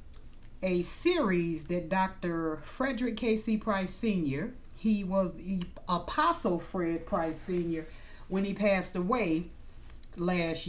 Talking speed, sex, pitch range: 110 wpm, female, 170-215 Hz